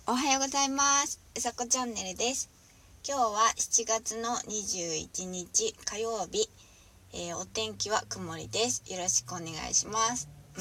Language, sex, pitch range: Japanese, female, 145-245 Hz